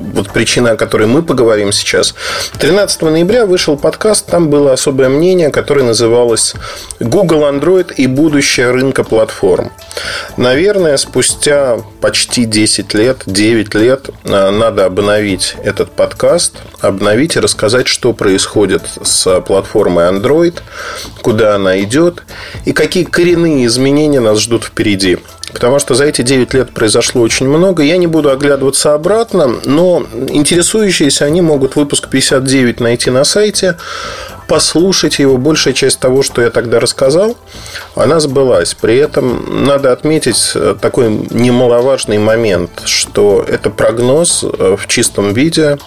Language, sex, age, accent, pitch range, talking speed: Russian, male, 30-49, native, 115-160 Hz, 130 wpm